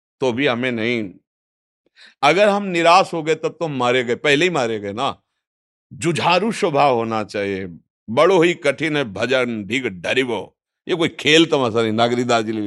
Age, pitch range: 50-69, 120-160 Hz